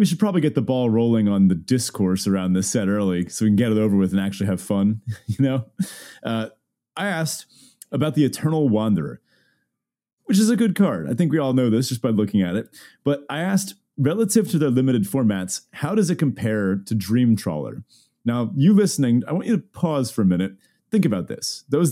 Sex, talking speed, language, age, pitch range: male, 220 wpm, English, 30-49, 105-150 Hz